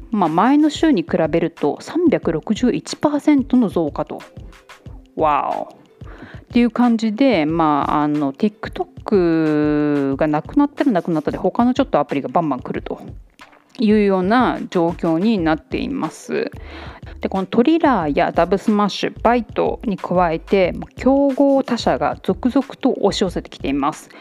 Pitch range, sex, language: 175-270 Hz, female, Japanese